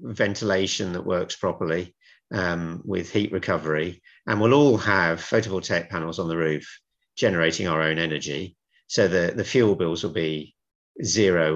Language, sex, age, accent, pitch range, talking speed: English, male, 50-69, British, 85-120 Hz, 150 wpm